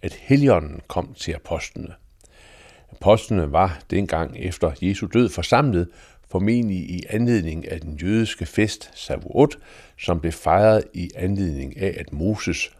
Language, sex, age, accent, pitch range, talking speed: Danish, male, 60-79, native, 85-110 Hz, 130 wpm